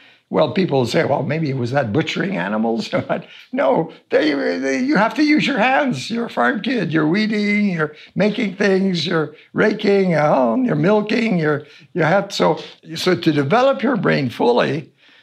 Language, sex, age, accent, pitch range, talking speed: English, male, 60-79, American, 145-195 Hz, 160 wpm